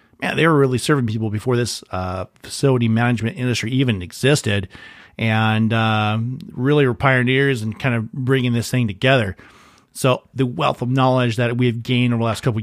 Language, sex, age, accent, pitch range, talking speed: English, male, 40-59, American, 115-135 Hz, 180 wpm